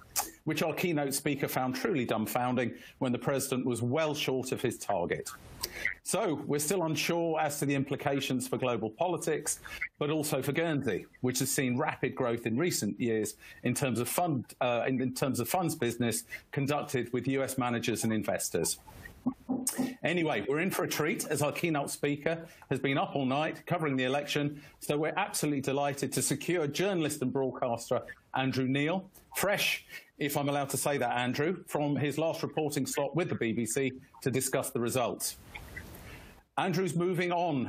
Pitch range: 130-155 Hz